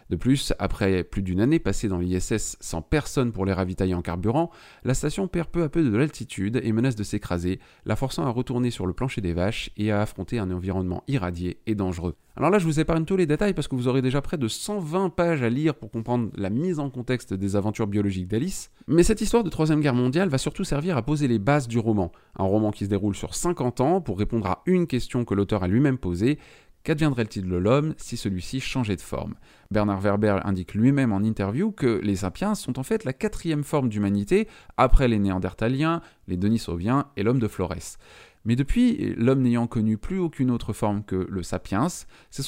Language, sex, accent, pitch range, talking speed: French, male, French, 95-145 Hz, 220 wpm